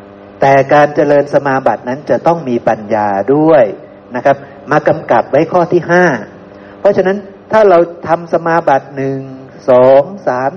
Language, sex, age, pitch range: Thai, male, 60-79, 100-160 Hz